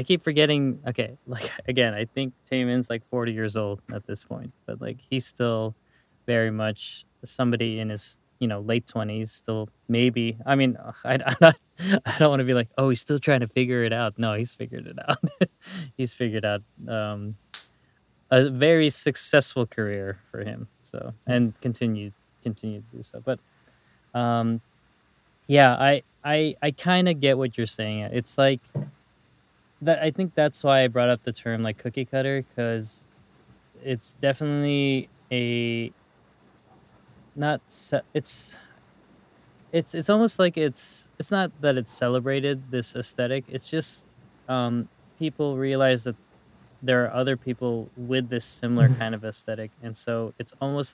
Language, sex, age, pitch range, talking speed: English, male, 20-39, 115-135 Hz, 165 wpm